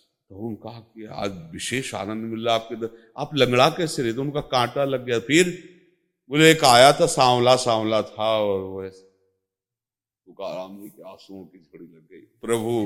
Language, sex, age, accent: Hindi, male, 50-69, native